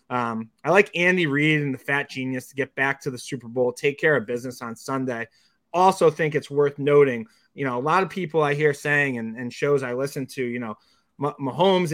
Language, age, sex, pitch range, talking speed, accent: English, 30-49, male, 125-160 Hz, 220 wpm, American